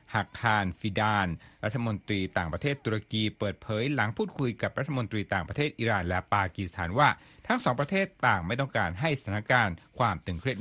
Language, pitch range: Thai, 100-135 Hz